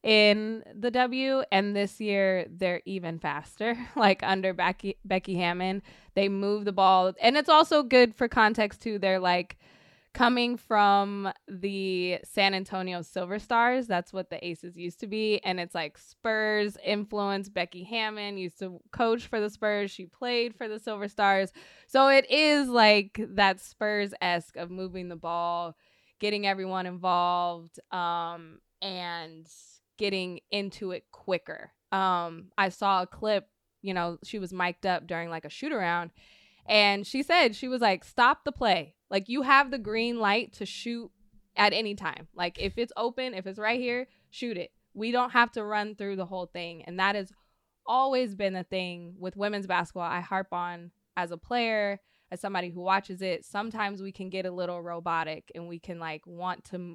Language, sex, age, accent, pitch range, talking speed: English, female, 20-39, American, 180-215 Hz, 175 wpm